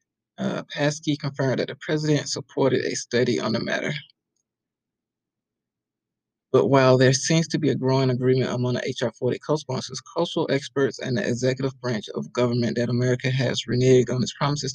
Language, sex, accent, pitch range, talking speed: English, male, American, 125-150 Hz, 165 wpm